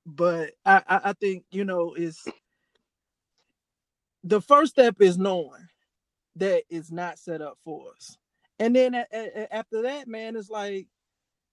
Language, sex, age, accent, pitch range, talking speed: English, male, 20-39, American, 160-205 Hz, 145 wpm